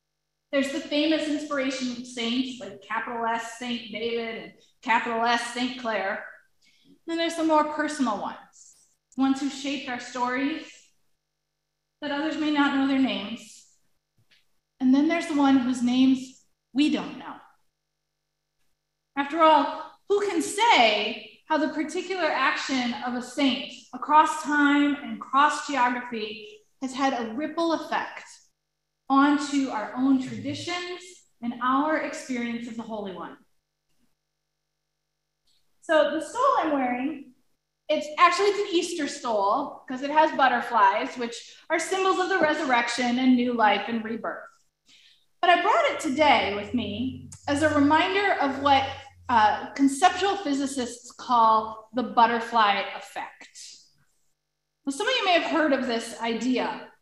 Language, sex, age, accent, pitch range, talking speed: English, female, 30-49, American, 240-305 Hz, 140 wpm